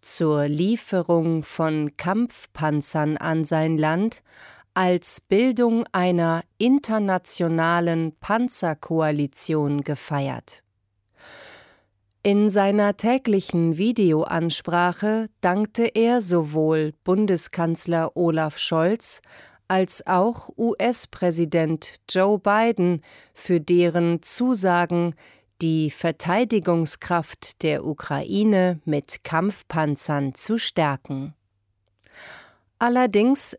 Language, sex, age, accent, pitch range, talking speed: German, female, 40-59, German, 160-200 Hz, 70 wpm